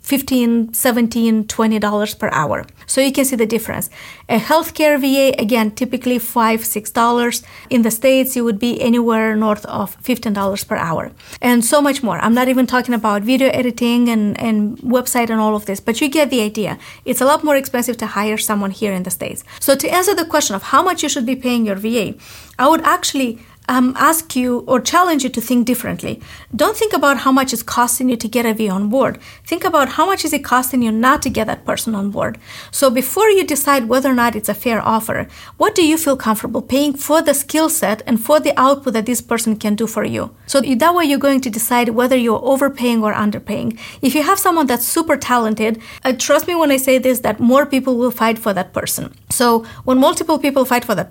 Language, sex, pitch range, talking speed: English, female, 225-275 Hz, 230 wpm